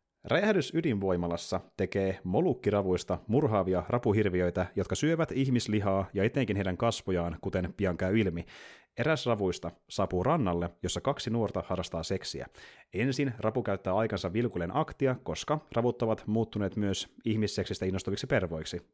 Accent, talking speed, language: native, 125 wpm, Finnish